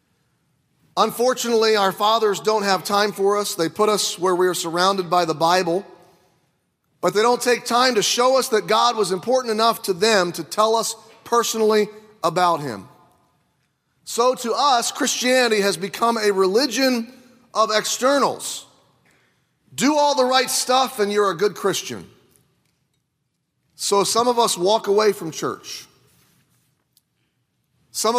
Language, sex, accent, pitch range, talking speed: English, male, American, 165-225 Hz, 145 wpm